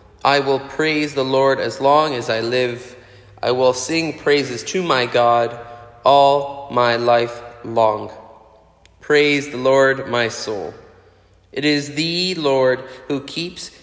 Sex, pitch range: male, 120-150 Hz